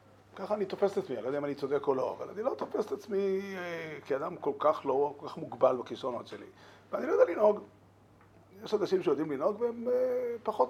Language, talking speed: Hebrew, 215 wpm